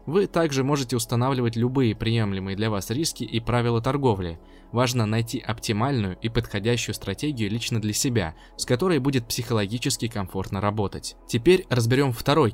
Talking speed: 145 wpm